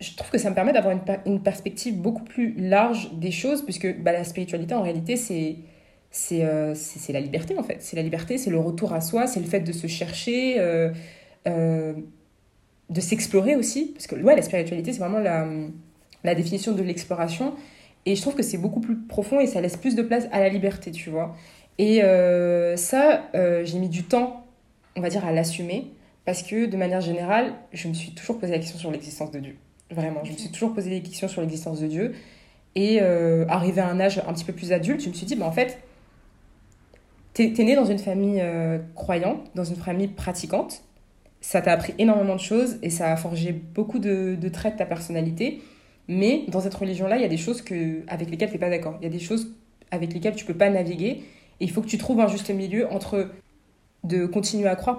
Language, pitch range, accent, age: French, 170-215 Hz, French, 20-39